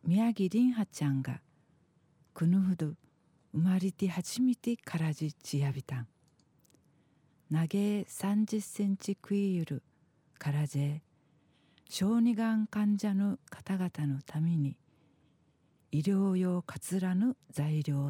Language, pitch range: Japanese, 150-195 Hz